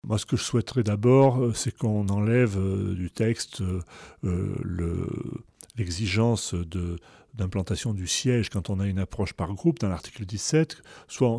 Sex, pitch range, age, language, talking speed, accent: male, 100-125 Hz, 40-59, French, 140 wpm, French